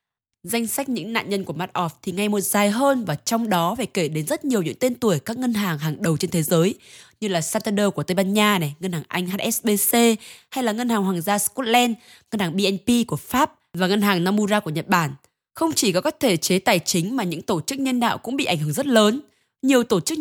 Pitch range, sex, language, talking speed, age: 180-235 Hz, female, Vietnamese, 255 wpm, 20-39